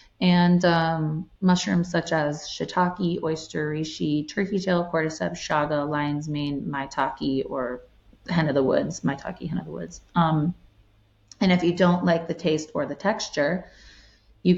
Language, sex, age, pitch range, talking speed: English, female, 30-49, 145-175 Hz, 150 wpm